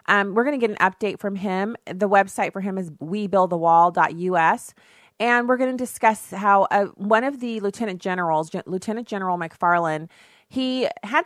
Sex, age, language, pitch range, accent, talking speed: female, 30-49, English, 165-205 Hz, American, 175 wpm